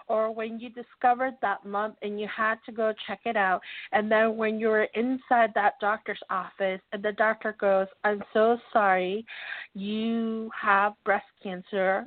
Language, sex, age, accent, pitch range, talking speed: English, female, 40-59, American, 200-235 Hz, 170 wpm